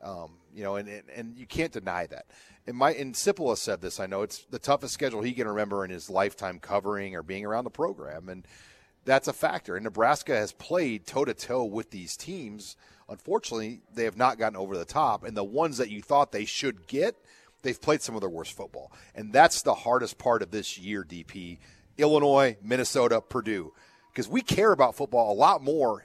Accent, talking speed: American, 210 wpm